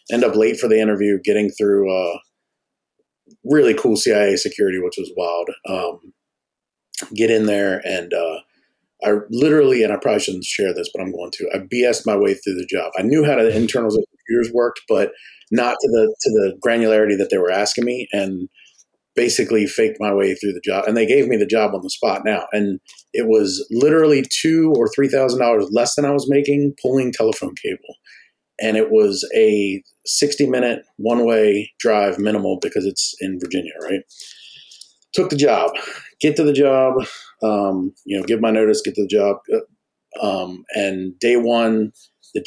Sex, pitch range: male, 105-160 Hz